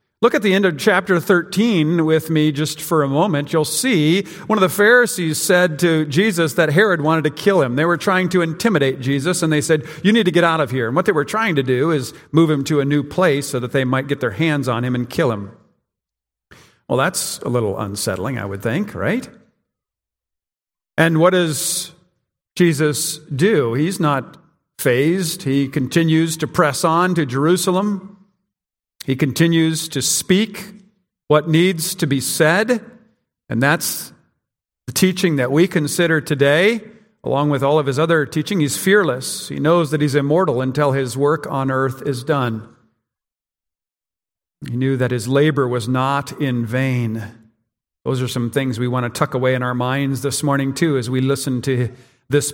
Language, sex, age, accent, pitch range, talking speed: English, male, 50-69, American, 130-175 Hz, 185 wpm